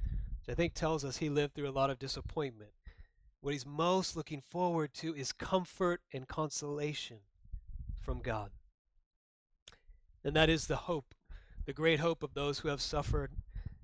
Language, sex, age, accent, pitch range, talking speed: English, male, 30-49, American, 110-170 Hz, 155 wpm